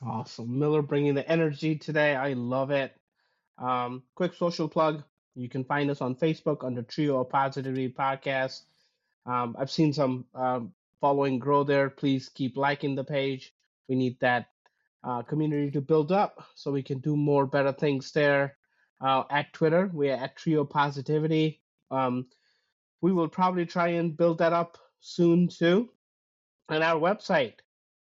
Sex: male